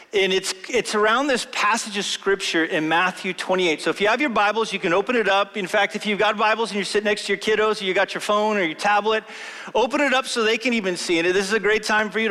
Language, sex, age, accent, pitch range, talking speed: English, male, 40-59, American, 195-235 Hz, 290 wpm